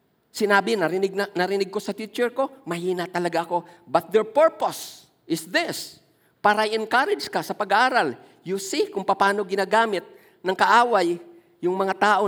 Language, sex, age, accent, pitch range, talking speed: Filipino, male, 50-69, native, 205-290 Hz, 150 wpm